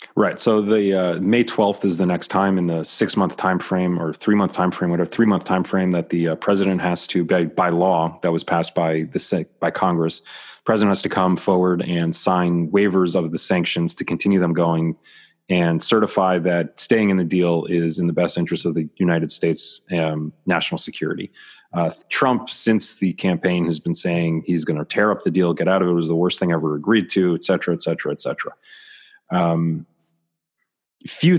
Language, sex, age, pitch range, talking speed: English, male, 30-49, 85-95 Hz, 215 wpm